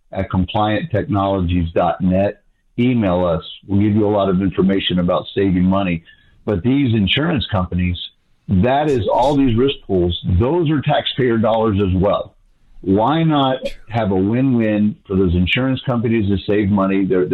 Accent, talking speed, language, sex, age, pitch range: American, 145 wpm, English, male, 50-69, 95-115 Hz